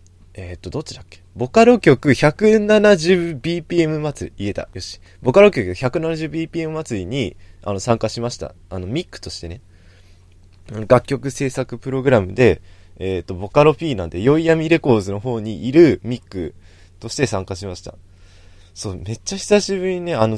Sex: male